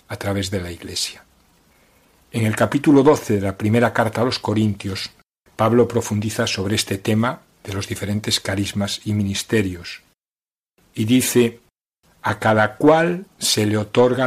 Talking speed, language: 145 wpm, Spanish